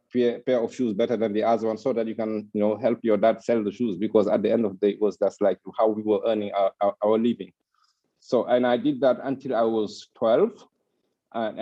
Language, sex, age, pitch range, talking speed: English, male, 50-69, 105-125 Hz, 255 wpm